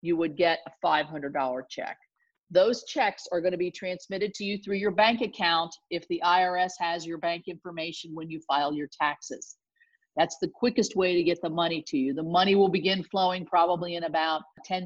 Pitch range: 160-195 Hz